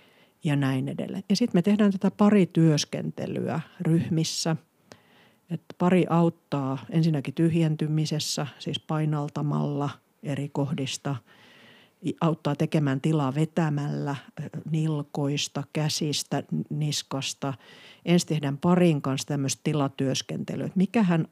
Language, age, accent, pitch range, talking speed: Finnish, 50-69, native, 145-180 Hz, 95 wpm